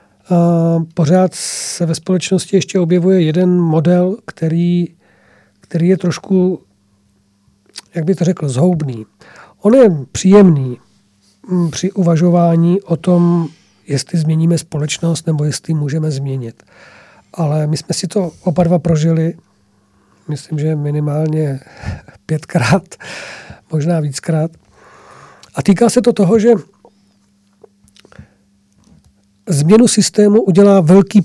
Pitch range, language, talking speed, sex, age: 145-180 Hz, Czech, 105 wpm, male, 50-69